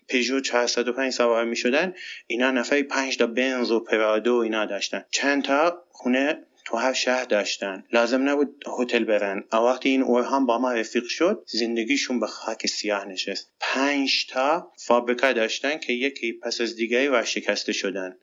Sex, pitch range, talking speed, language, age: male, 110-135 Hz, 160 wpm, English, 30-49